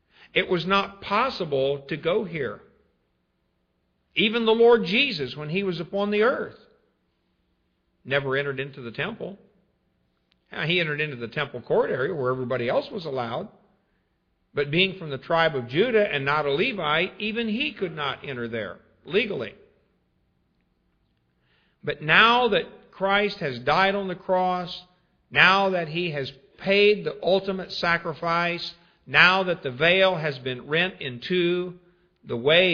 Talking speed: 150 wpm